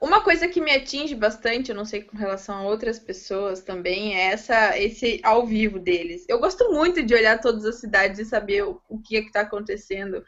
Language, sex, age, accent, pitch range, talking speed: Portuguese, female, 20-39, Brazilian, 205-255 Hz, 220 wpm